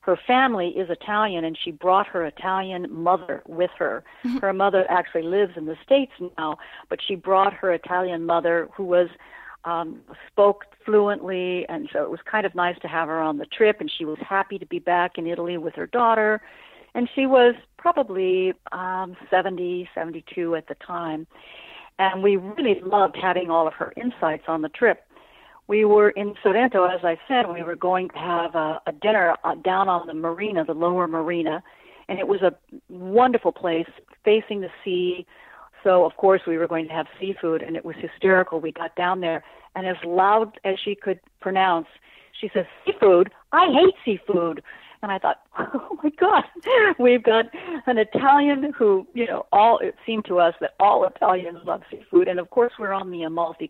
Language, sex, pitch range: English, female, 170-210 Hz